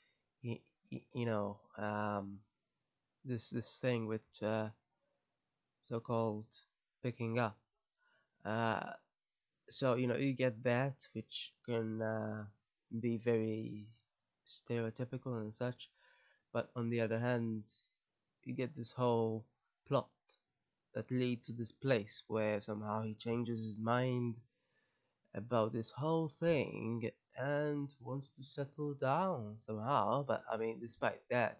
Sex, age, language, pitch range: male, 20-39, English, 110-125 Hz